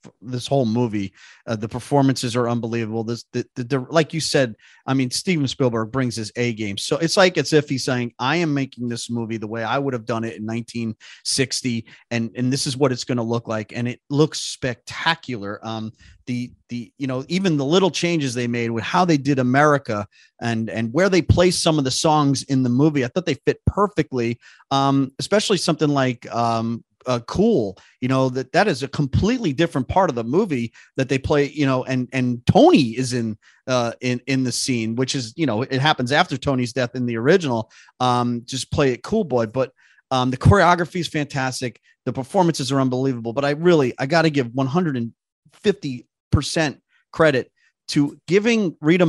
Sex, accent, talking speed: male, American, 200 wpm